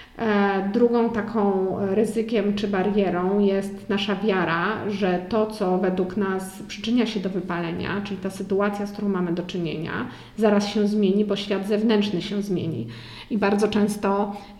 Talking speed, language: 150 wpm, Polish